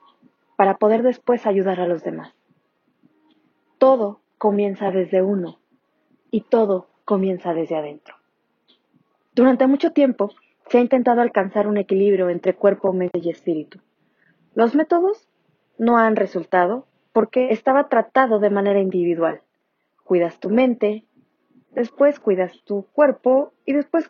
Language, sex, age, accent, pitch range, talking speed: Spanish, female, 30-49, Mexican, 185-245 Hz, 125 wpm